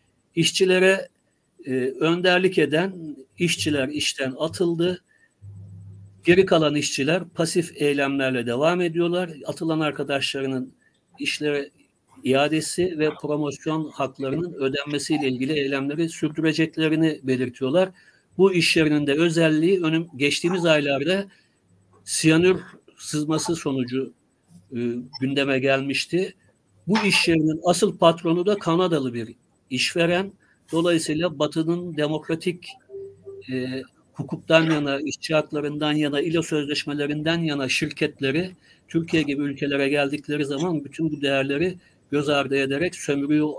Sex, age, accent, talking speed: male, 60-79, native, 100 wpm